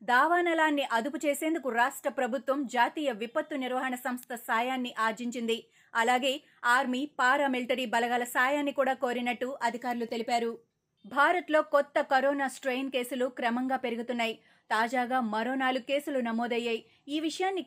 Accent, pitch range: native, 245-285 Hz